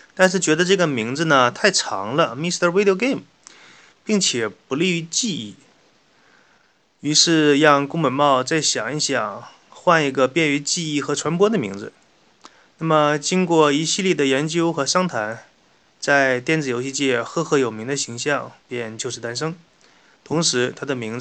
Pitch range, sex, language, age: 130-165 Hz, male, Chinese, 20-39